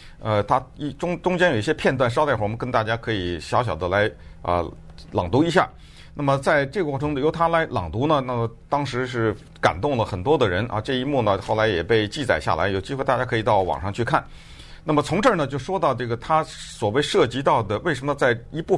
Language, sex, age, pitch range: Chinese, male, 50-69, 115-155 Hz